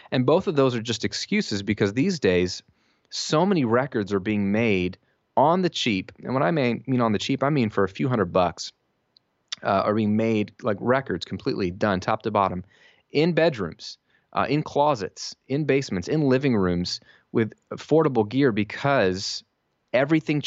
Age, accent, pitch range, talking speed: 30-49, American, 105-145 Hz, 175 wpm